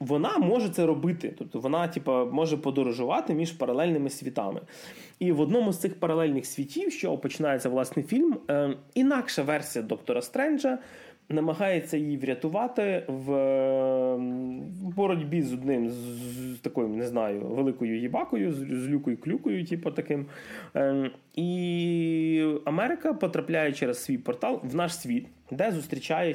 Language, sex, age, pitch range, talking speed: Russian, male, 20-39, 130-165 Hz, 145 wpm